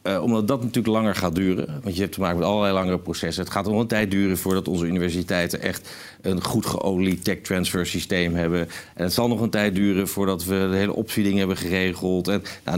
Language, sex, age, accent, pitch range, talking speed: Dutch, male, 50-69, Dutch, 85-100 Hz, 230 wpm